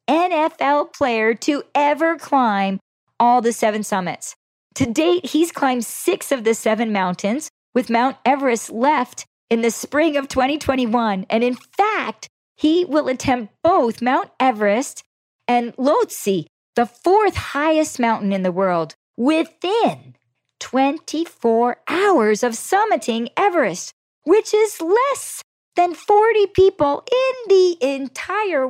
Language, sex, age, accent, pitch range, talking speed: English, female, 40-59, American, 220-310 Hz, 125 wpm